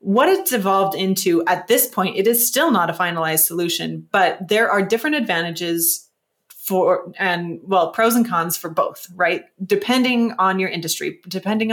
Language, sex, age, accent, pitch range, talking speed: English, female, 30-49, American, 175-205 Hz, 170 wpm